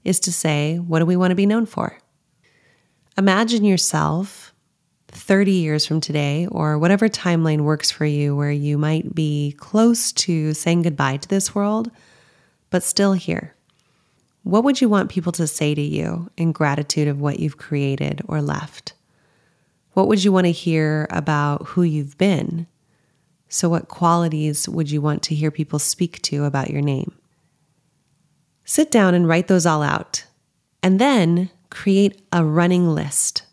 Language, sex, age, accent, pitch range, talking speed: English, female, 30-49, American, 150-185 Hz, 165 wpm